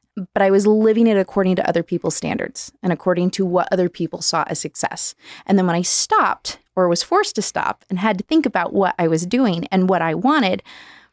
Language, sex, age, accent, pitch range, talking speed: English, female, 20-39, American, 180-235 Hz, 225 wpm